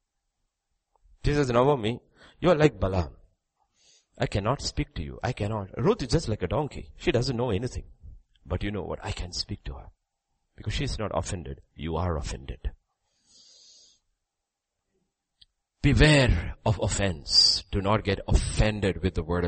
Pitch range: 85-125 Hz